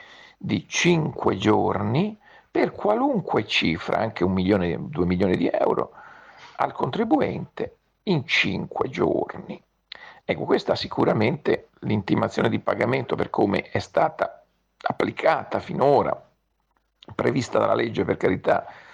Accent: native